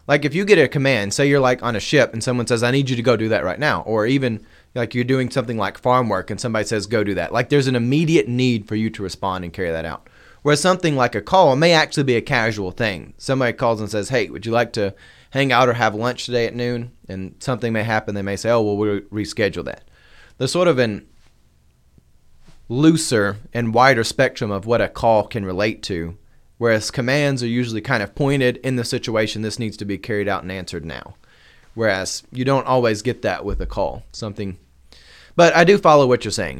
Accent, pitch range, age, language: American, 100-130 Hz, 30-49, English